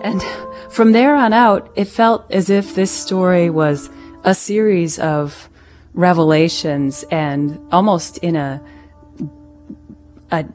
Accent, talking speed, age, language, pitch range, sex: American, 120 wpm, 30-49, English, 145-185 Hz, female